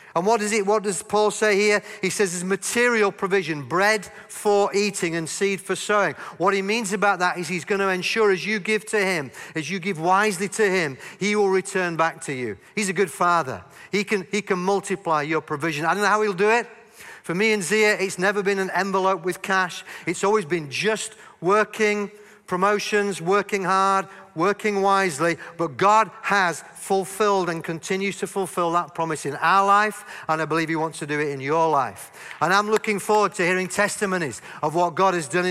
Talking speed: 205 wpm